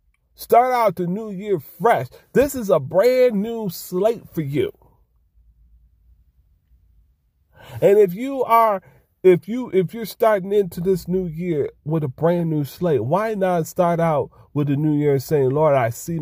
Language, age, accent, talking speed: English, 40-59, American, 175 wpm